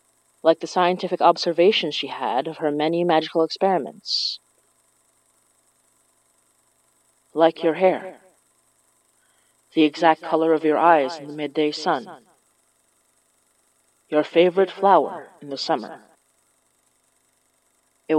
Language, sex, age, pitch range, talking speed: English, female, 30-49, 150-175 Hz, 100 wpm